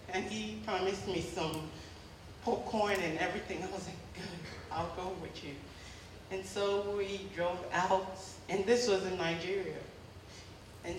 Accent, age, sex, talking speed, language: American, 30-49, female, 145 wpm, English